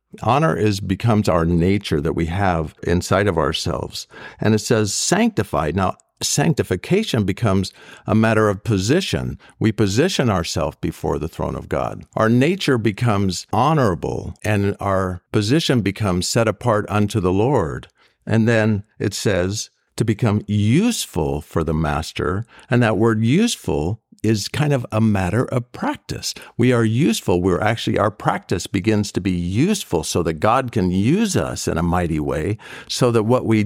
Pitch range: 95-120 Hz